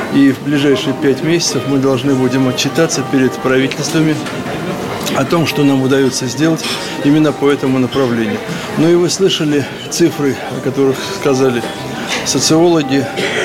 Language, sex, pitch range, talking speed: Russian, male, 130-150 Hz, 135 wpm